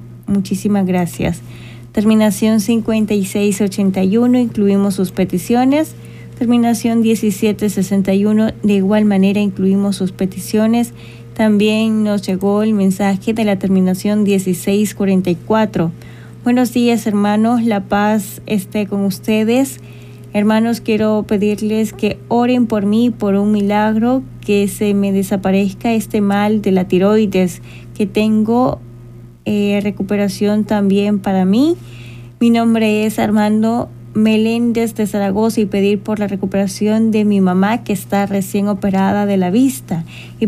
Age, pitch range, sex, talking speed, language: 20-39, 195-220 Hz, female, 120 wpm, Spanish